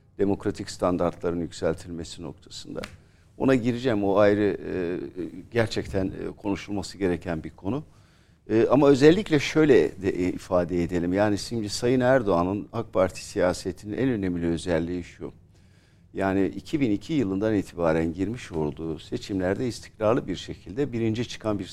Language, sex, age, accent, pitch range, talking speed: Turkish, male, 50-69, native, 90-125 Hz, 120 wpm